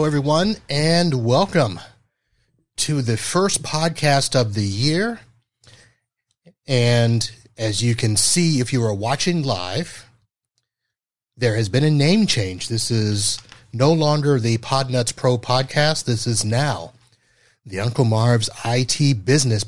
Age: 30-49